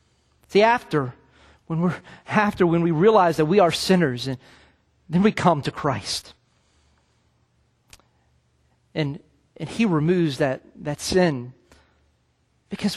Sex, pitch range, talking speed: male, 125-185 Hz, 120 wpm